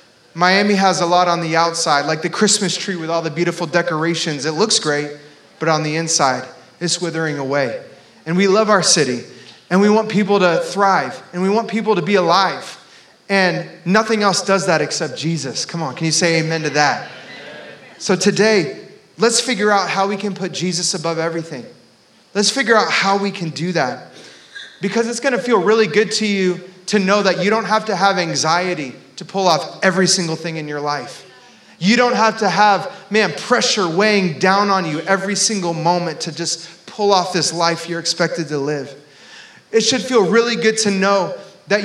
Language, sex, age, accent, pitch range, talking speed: English, male, 30-49, American, 165-205 Hz, 195 wpm